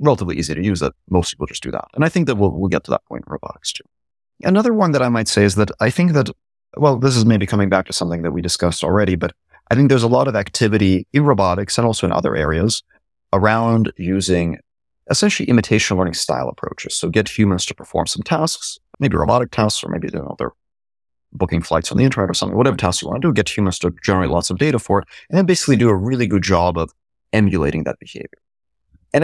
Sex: male